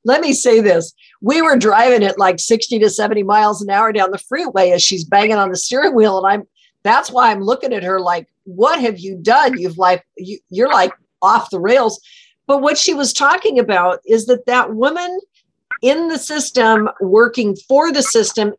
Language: English